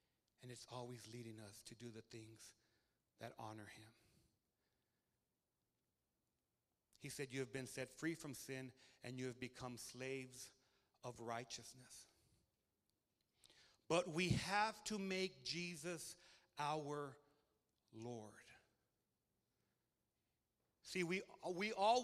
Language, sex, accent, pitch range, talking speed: English, male, American, 130-225 Hz, 110 wpm